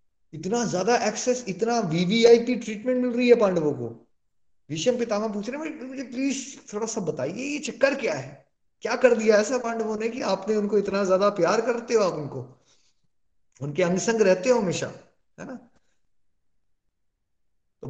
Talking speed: 165 wpm